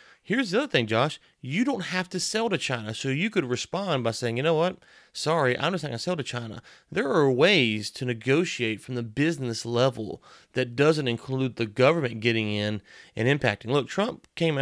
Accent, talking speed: American, 210 wpm